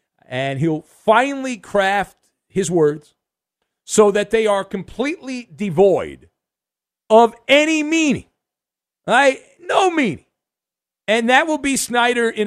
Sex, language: male, English